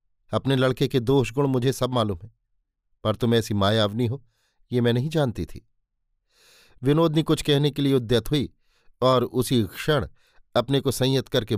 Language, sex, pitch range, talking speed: Hindi, male, 110-135 Hz, 175 wpm